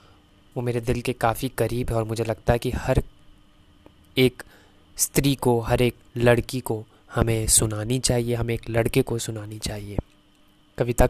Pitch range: 110-145 Hz